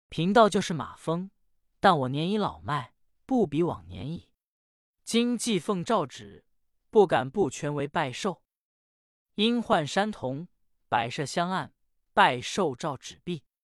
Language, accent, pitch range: Chinese, native, 135-210 Hz